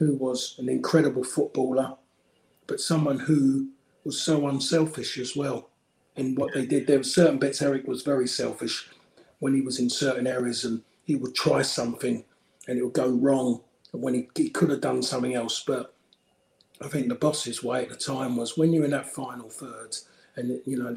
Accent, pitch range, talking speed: British, 125-140 Hz, 195 wpm